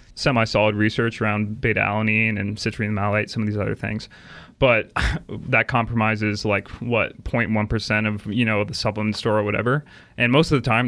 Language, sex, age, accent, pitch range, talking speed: English, male, 20-39, American, 105-125 Hz, 190 wpm